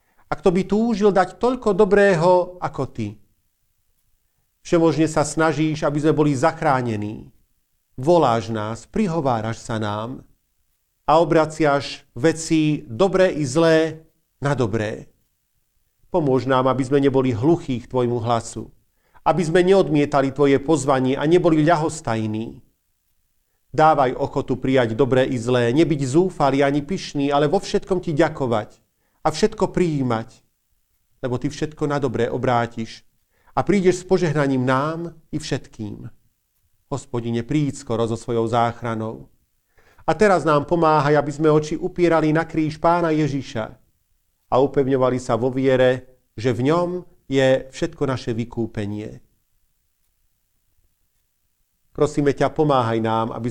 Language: Slovak